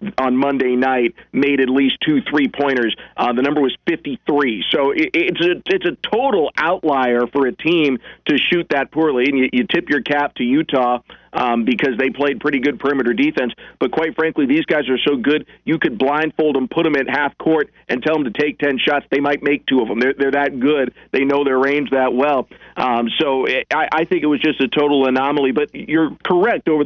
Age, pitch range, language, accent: 40-59, 130-160 Hz, English, American